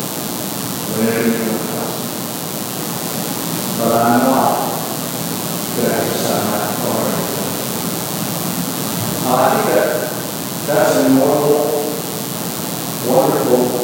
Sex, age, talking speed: male, 50-69, 65 wpm